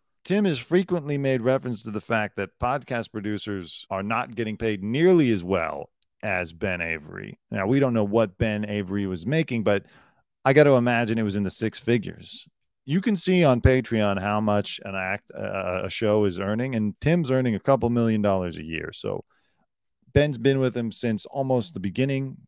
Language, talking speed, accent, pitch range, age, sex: English, 195 wpm, American, 105-130 Hz, 40-59, male